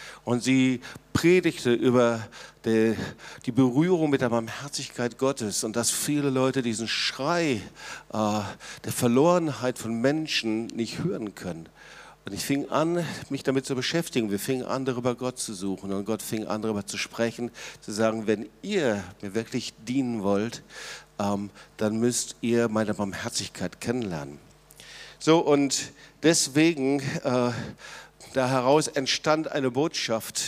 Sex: male